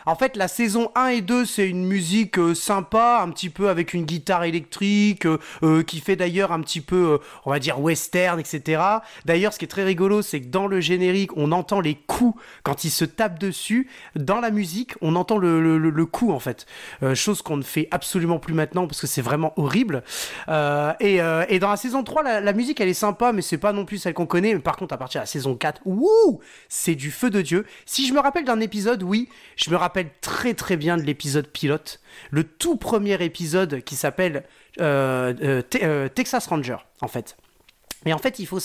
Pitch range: 155-220 Hz